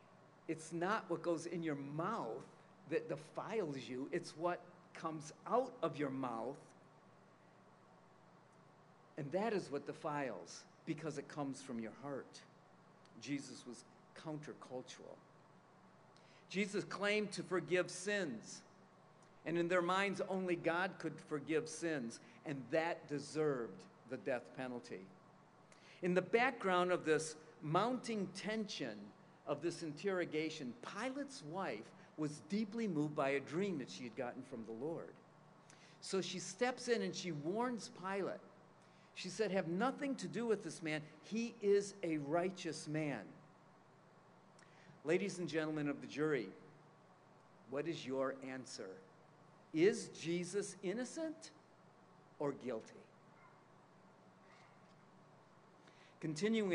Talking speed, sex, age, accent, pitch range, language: 120 wpm, male, 50-69, American, 155-190 Hz, English